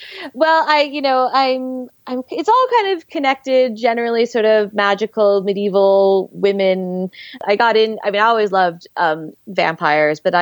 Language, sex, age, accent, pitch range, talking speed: English, female, 20-39, American, 160-200 Hz, 160 wpm